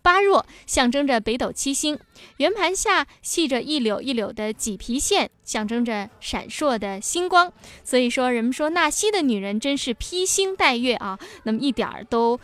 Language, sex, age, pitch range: Chinese, female, 20-39, 220-295 Hz